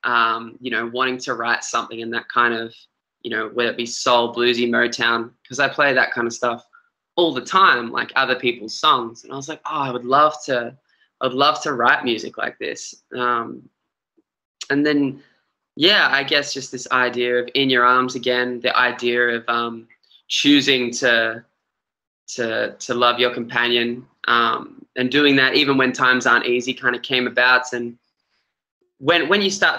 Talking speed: 190 wpm